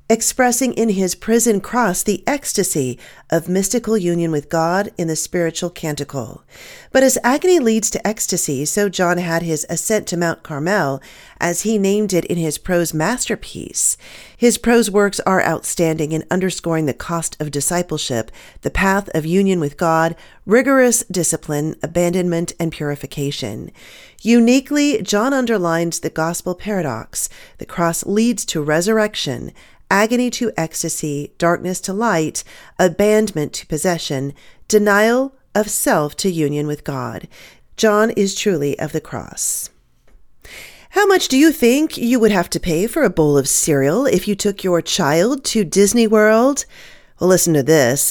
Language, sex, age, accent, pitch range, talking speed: English, female, 40-59, American, 160-220 Hz, 150 wpm